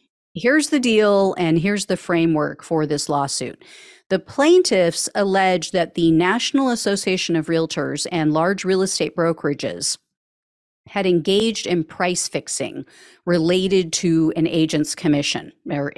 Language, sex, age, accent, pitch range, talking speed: English, female, 40-59, American, 160-200 Hz, 130 wpm